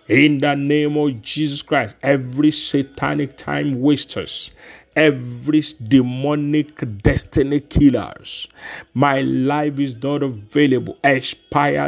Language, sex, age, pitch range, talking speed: English, male, 40-59, 140-155 Hz, 100 wpm